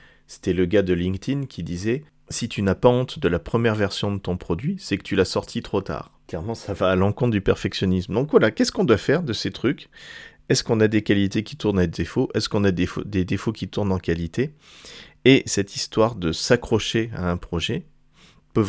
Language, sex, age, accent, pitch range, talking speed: French, male, 30-49, French, 95-120 Hz, 225 wpm